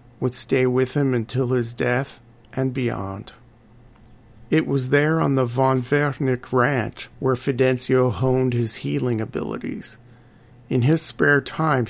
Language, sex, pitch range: English, male, 120-135 Hz